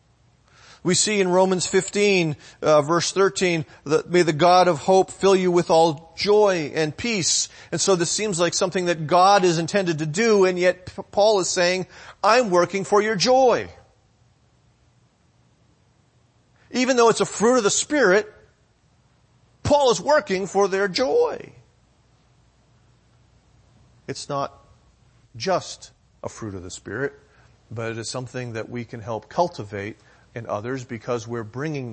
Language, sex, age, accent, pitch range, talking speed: English, male, 40-59, American, 120-175 Hz, 150 wpm